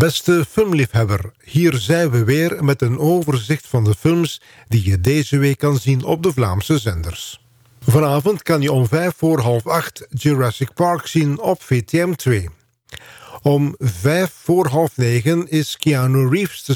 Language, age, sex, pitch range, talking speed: Dutch, 50-69, male, 120-155 Hz, 160 wpm